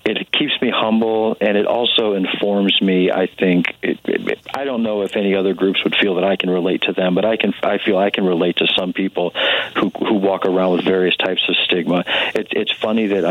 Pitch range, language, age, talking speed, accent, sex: 90-105 Hz, English, 50-69, 235 wpm, American, male